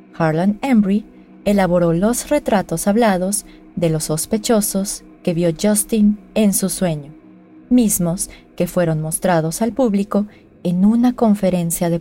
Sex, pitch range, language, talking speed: female, 175-225 Hz, Spanish, 125 wpm